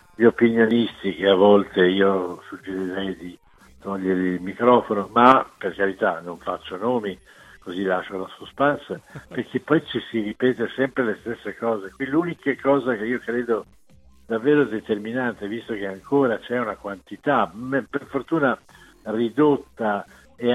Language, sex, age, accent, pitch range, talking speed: Italian, male, 60-79, native, 100-130 Hz, 140 wpm